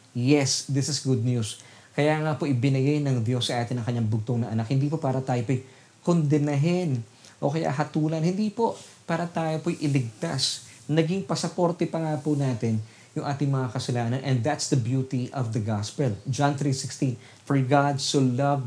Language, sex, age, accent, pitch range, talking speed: Filipino, male, 20-39, native, 125-160 Hz, 180 wpm